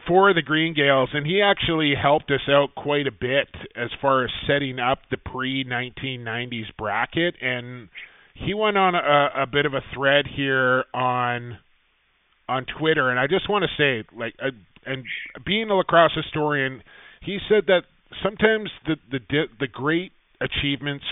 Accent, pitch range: American, 125-155 Hz